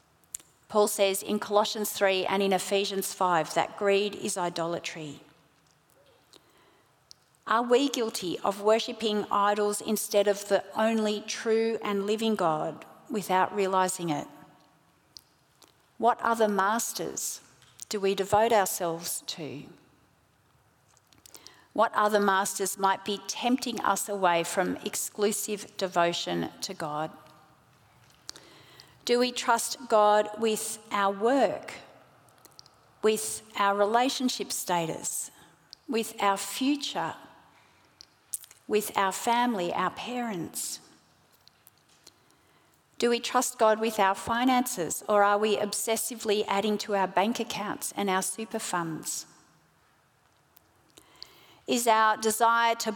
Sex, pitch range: female, 190-225 Hz